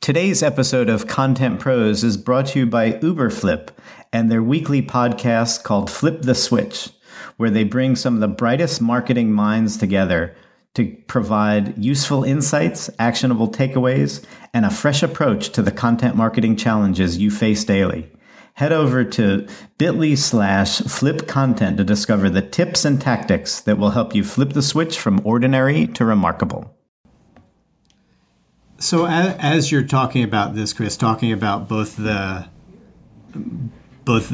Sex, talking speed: male, 145 wpm